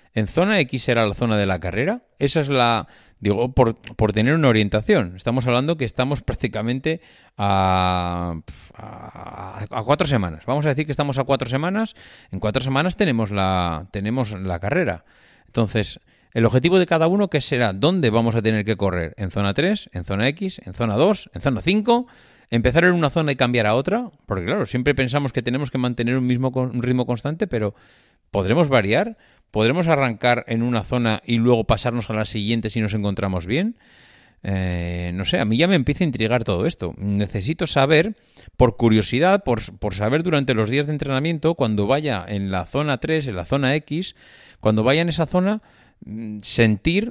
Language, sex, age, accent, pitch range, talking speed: Spanish, male, 30-49, Spanish, 105-145 Hz, 190 wpm